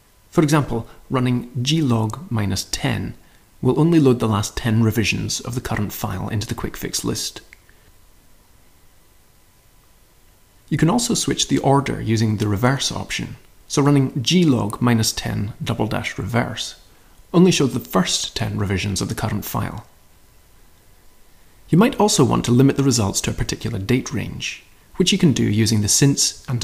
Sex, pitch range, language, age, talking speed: male, 100-135 Hz, English, 30-49, 160 wpm